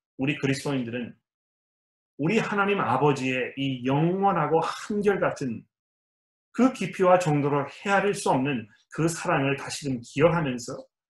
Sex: male